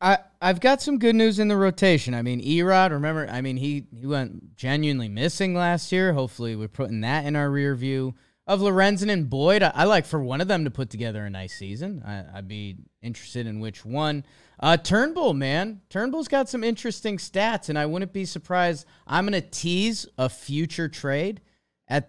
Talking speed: 200 wpm